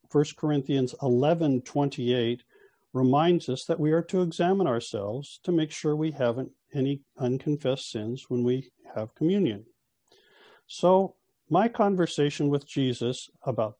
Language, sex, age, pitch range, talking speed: English, male, 50-69, 120-165 Hz, 125 wpm